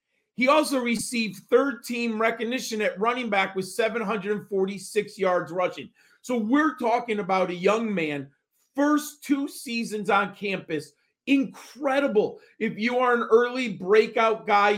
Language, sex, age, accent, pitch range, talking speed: English, male, 40-59, American, 190-235 Hz, 135 wpm